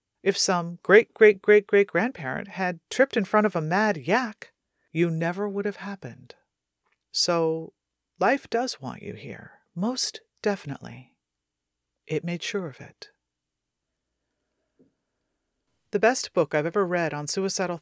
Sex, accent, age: female, American, 40-59